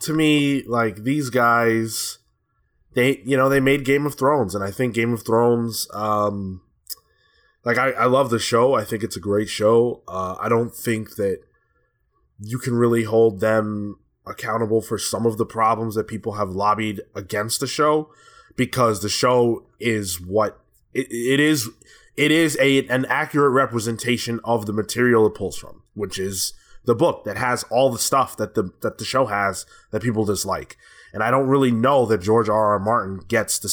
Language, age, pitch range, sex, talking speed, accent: English, 20-39, 105-130 Hz, male, 185 wpm, American